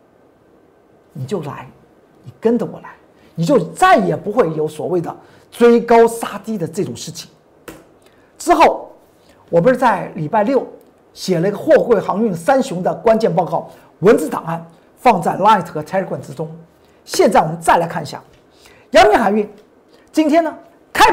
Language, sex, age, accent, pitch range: Chinese, male, 50-69, native, 185-295 Hz